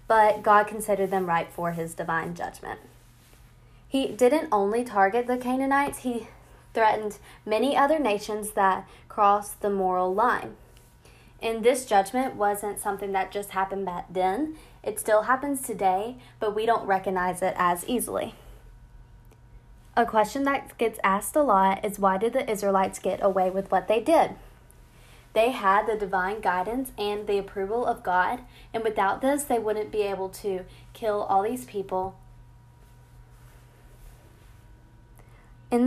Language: English